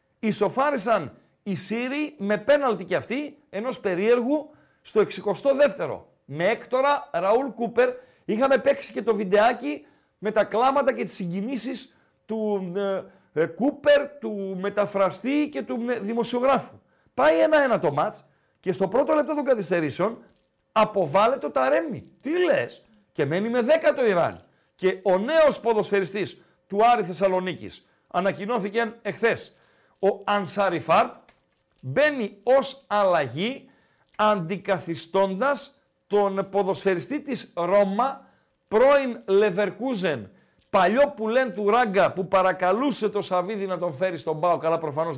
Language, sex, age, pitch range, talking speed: Greek, male, 50-69, 180-250 Hz, 120 wpm